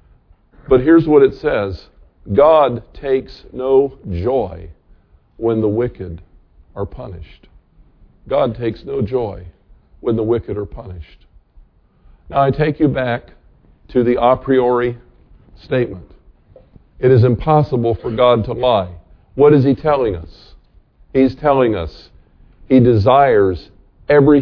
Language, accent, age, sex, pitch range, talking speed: English, American, 50-69, male, 110-155 Hz, 125 wpm